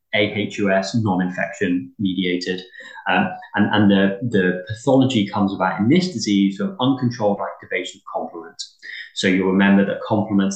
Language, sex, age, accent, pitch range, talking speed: English, male, 20-39, British, 95-120 Hz, 135 wpm